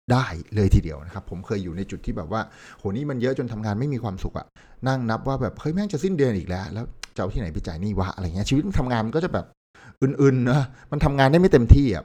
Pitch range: 90-115 Hz